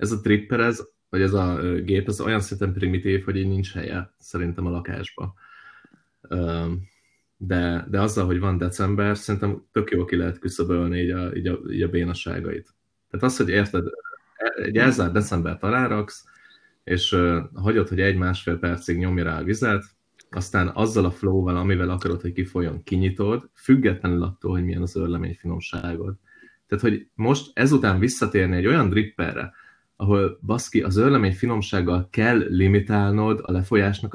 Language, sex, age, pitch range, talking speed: Hungarian, male, 20-39, 85-105 Hz, 155 wpm